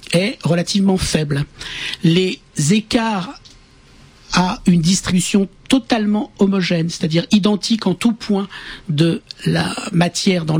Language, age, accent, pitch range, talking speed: French, 50-69, French, 160-200 Hz, 110 wpm